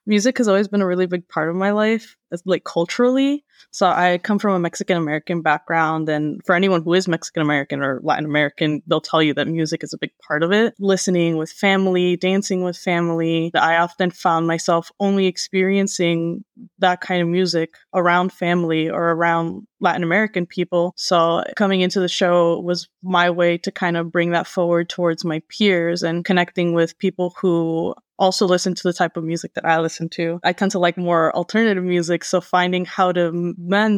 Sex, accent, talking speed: female, American, 195 wpm